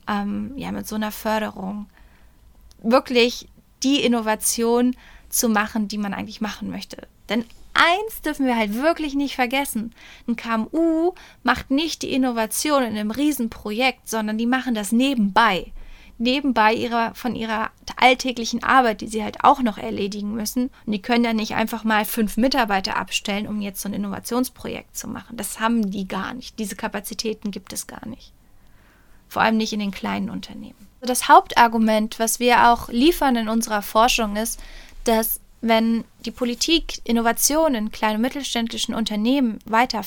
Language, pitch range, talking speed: German, 215-250 Hz, 160 wpm